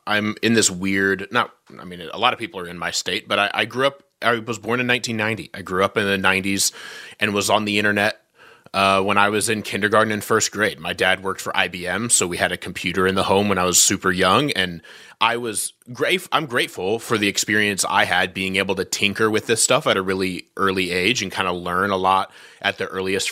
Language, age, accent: English, 30-49, American